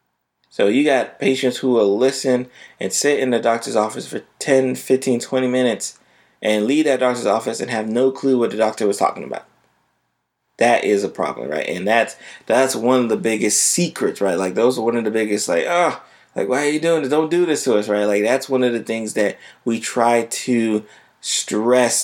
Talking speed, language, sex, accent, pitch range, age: 215 wpm, English, male, American, 110-130 Hz, 20-39